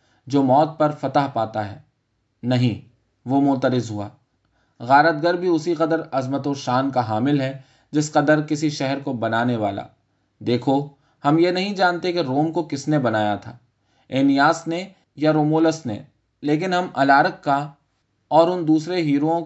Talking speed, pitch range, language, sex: 160 wpm, 115-155 Hz, Urdu, male